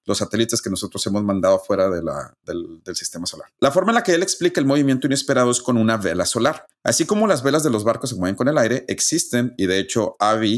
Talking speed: 255 wpm